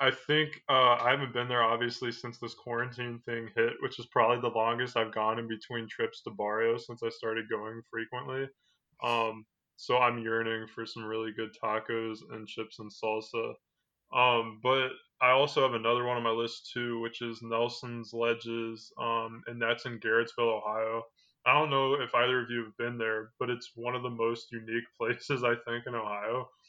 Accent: American